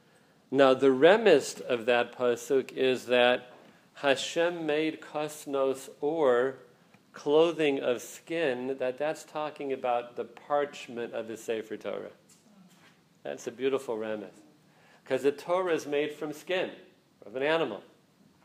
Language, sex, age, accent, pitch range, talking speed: English, male, 40-59, American, 130-160 Hz, 125 wpm